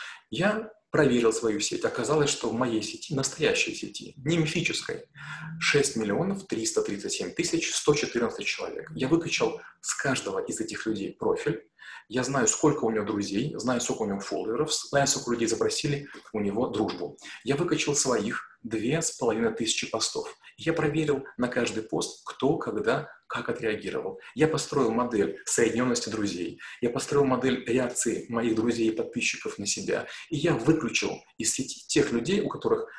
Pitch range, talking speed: 115-170 Hz, 155 wpm